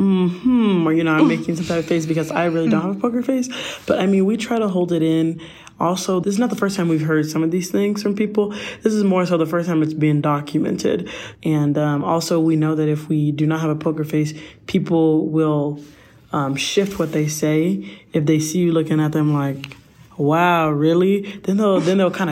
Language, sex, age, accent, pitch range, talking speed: English, male, 20-39, American, 150-175 Hz, 235 wpm